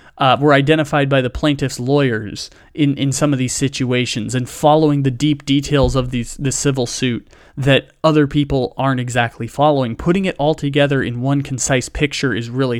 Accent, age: American, 30-49